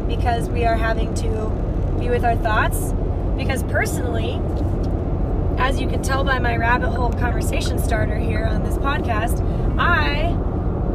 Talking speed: 140 wpm